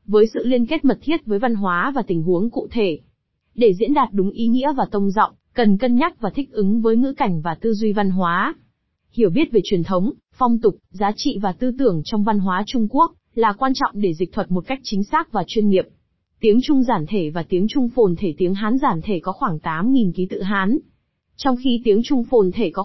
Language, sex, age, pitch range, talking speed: Vietnamese, female, 20-39, 195-250 Hz, 245 wpm